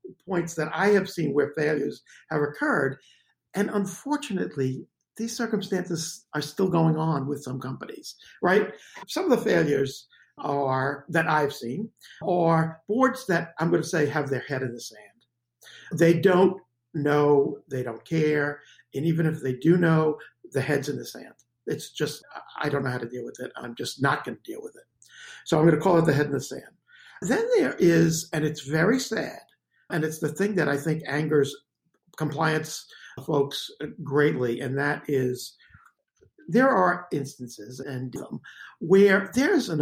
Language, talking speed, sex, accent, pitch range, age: English, 175 wpm, male, American, 140-180 Hz, 50-69